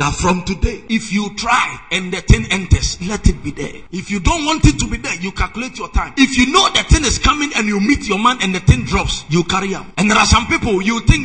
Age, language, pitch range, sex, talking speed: 50-69, English, 180-235 Hz, male, 275 wpm